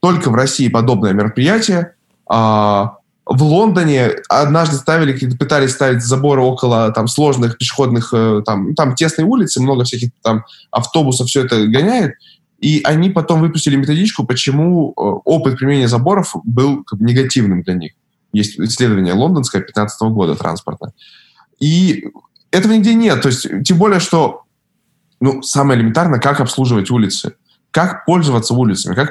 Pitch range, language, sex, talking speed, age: 125-175 Hz, Russian, male, 140 wpm, 20-39